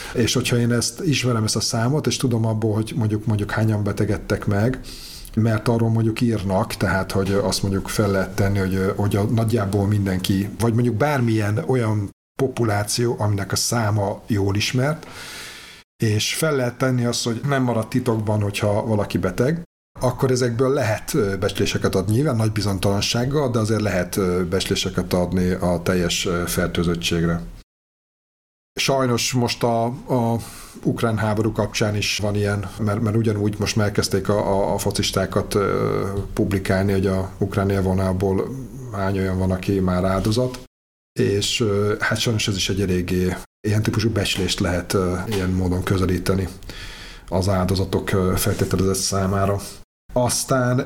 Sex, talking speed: male, 145 wpm